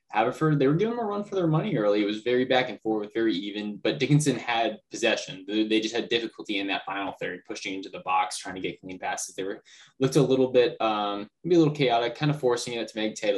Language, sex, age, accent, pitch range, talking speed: English, male, 10-29, American, 95-120 Hz, 255 wpm